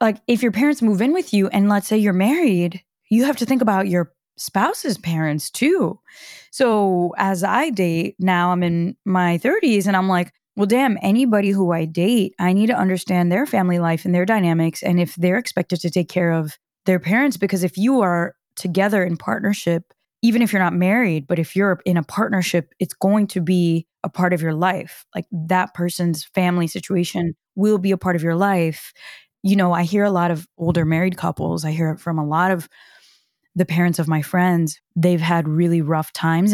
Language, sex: English, female